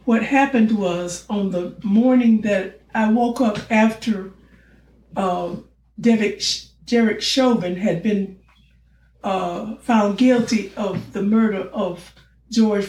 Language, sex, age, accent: English, female, 60-79, American